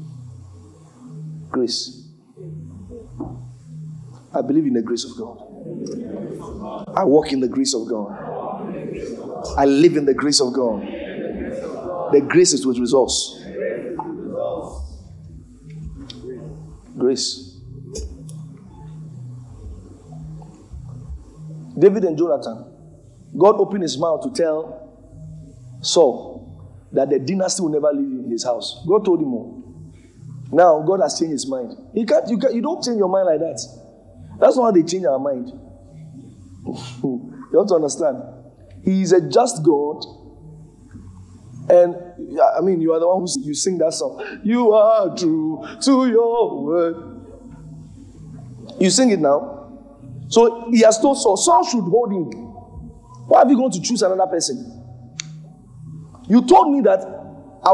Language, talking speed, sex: English, 130 wpm, male